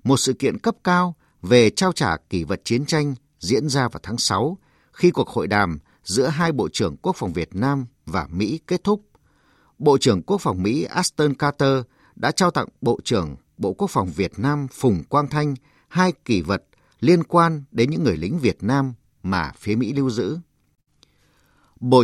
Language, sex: Vietnamese, male